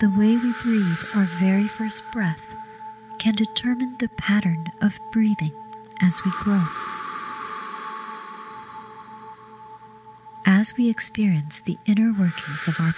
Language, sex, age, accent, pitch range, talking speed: English, female, 30-49, American, 180-225 Hz, 115 wpm